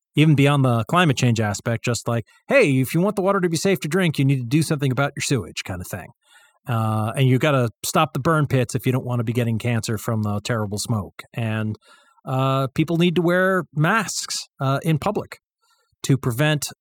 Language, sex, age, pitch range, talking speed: English, male, 40-59, 125-170 Hz, 225 wpm